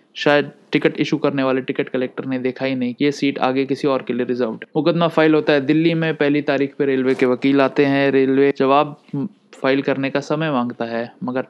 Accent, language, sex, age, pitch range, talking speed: native, Hindi, male, 20-39, 125-145 Hz, 230 wpm